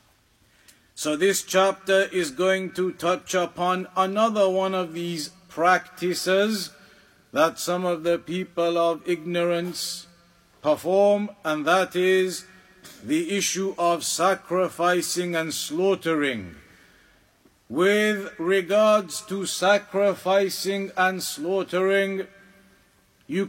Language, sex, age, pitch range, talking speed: English, male, 50-69, 180-200 Hz, 95 wpm